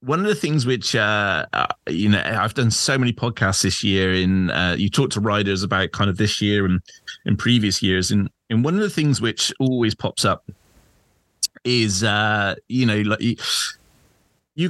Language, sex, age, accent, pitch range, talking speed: English, male, 30-49, British, 100-120 Hz, 190 wpm